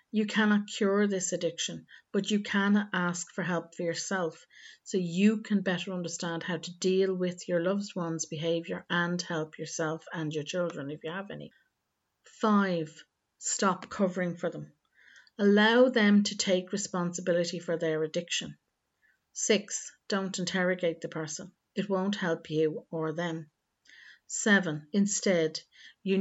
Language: English